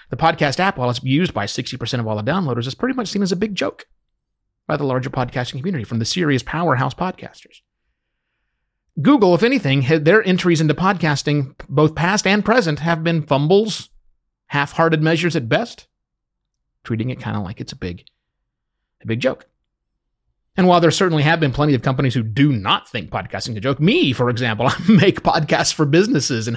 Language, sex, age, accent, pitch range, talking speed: English, male, 30-49, American, 120-165 Hz, 190 wpm